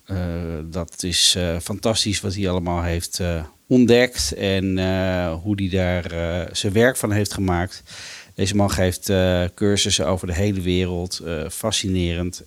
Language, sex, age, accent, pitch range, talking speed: Dutch, male, 40-59, Dutch, 90-110 Hz, 155 wpm